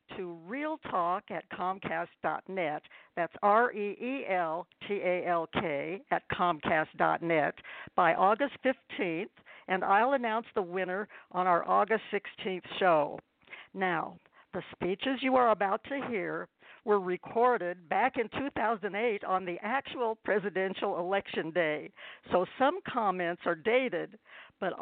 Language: English